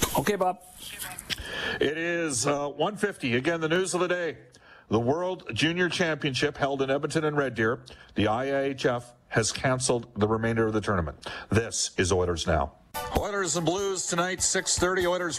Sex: male